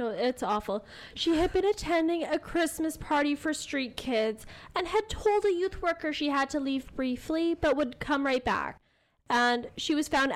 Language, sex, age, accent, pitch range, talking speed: English, female, 10-29, American, 215-280 Hz, 190 wpm